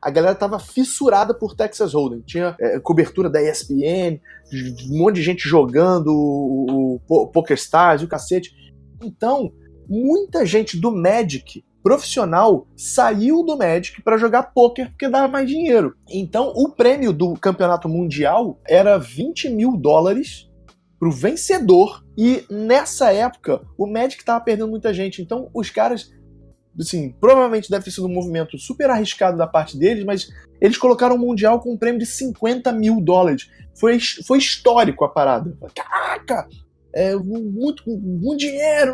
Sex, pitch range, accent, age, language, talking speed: male, 165-240 Hz, Brazilian, 20-39, Portuguese, 155 wpm